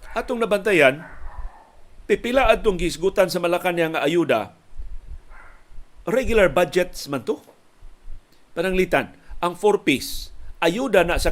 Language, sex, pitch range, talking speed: Filipino, male, 145-185 Hz, 105 wpm